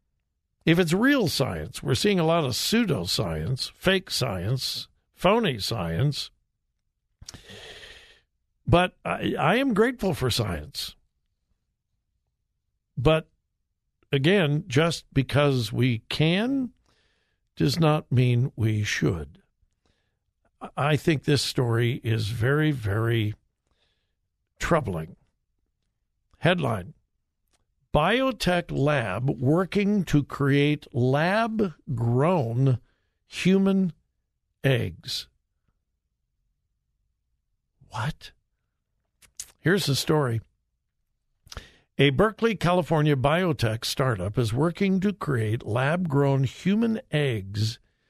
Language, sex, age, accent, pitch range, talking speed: English, male, 60-79, American, 120-175 Hz, 80 wpm